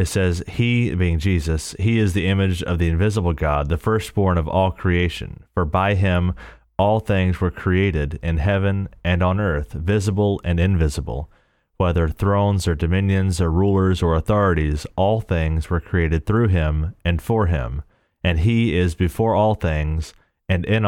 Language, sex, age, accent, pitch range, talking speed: English, male, 30-49, American, 80-95 Hz, 165 wpm